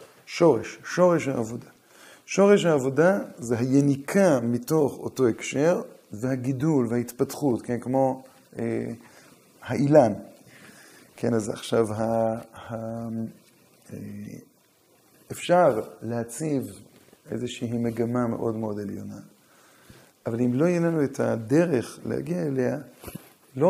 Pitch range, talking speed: 115-150 Hz, 100 wpm